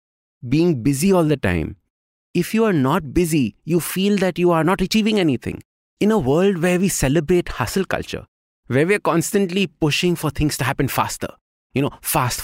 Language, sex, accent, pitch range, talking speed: English, male, Indian, 100-165 Hz, 190 wpm